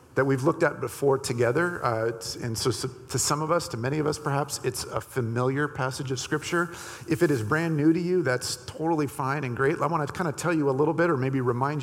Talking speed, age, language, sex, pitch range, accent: 255 wpm, 50-69, English, male, 120-155 Hz, American